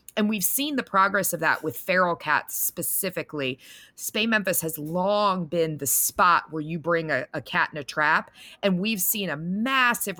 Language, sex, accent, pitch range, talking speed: English, female, American, 160-215 Hz, 190 wpm